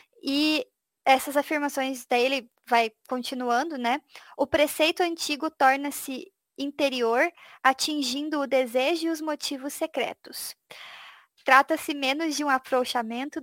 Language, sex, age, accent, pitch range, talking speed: Portuguese, female, 20-39, Brazilian, 245-290 Hz, 105 wpm